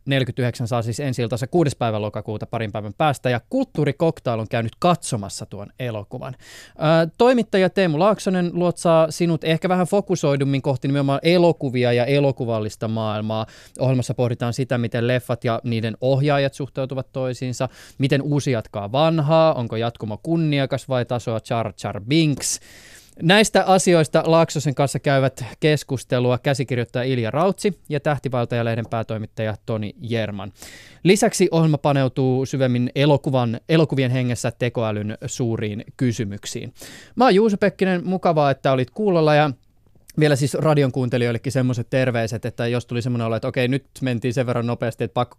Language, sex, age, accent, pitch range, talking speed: Finnish, male, 20-39, native, 115-145 Hz, 140 wpm